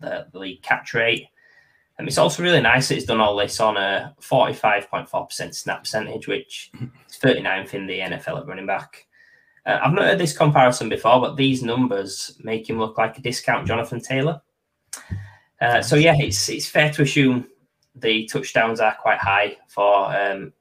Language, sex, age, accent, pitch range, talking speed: English, male, 10-29, British, 105-145 Hz, 185 wpm